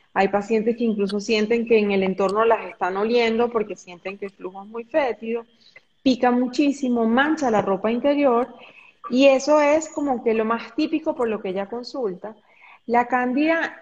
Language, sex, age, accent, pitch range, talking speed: Spanish, female, 30-49, Colombian, 210-275 Hz, 180 wpm